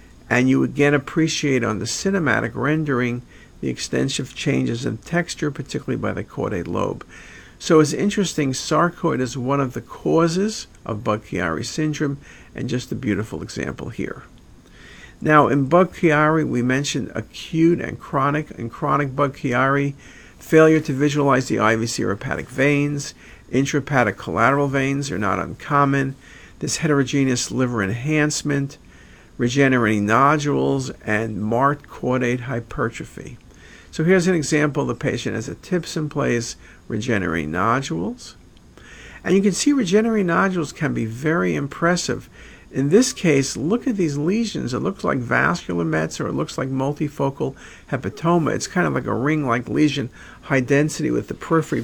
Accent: American